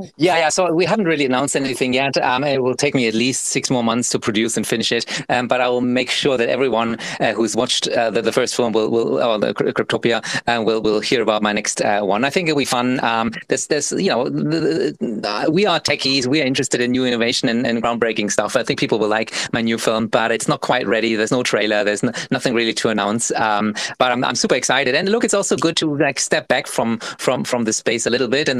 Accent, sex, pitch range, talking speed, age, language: German, male, 115-140 Hz, 265 wpm, 30-49, English